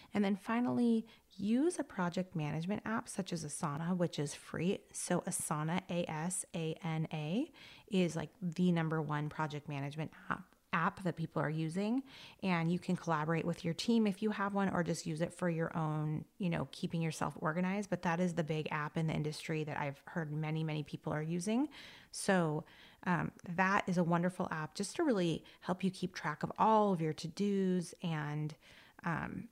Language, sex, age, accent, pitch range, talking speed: English, female, 30-49, American, 160-200 Hz, 185 wpm